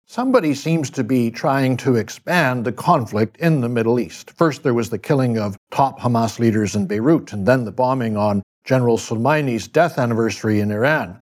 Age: 60-79